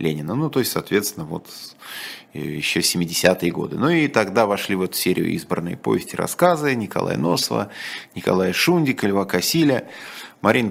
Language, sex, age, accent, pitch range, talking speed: Russian, male, 30-49, native, 80-110 Hz, 140 wpm